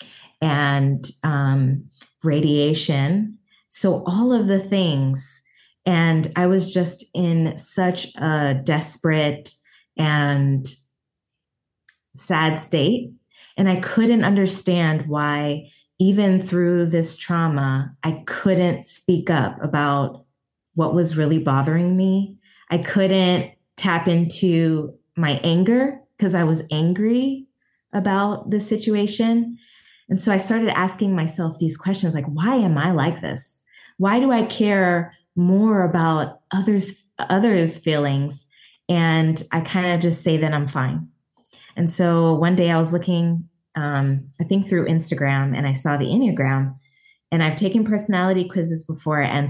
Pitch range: 145-185 Hz